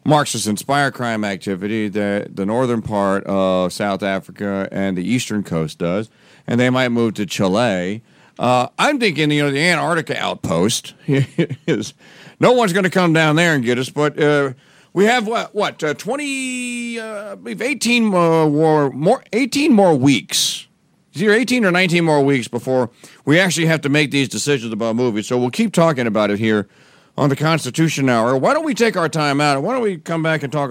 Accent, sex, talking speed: American, male, 190 wpm